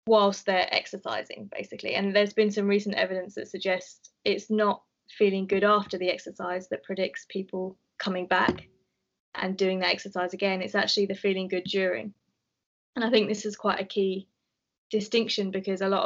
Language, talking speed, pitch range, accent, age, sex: English, 175 wpm, 185-205 Hz, British, 20-39, female